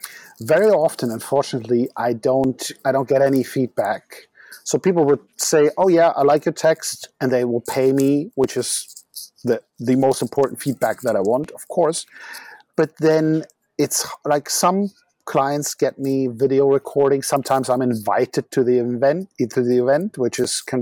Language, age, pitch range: English, 50-69, 120-145 Hz